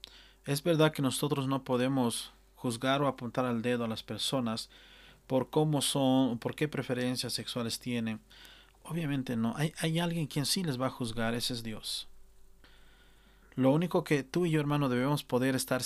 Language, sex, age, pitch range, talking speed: Spanish, male, 40-59, 115-140 Hz, 175 wpm